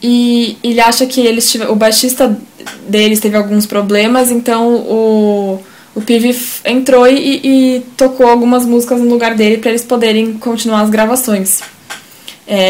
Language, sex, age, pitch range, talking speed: Portuguese, female, 10-29, 205-250 Hz, 145 wpm